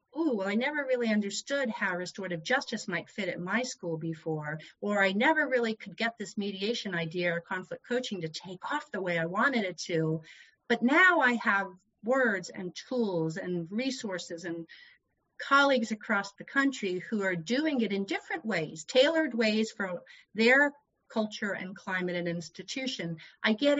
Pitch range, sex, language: 170-235 Hz, female, English